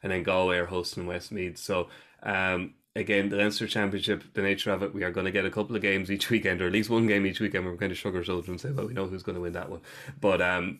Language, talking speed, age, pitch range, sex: English, 300 wpm, 20-39, 90-105 Hz, male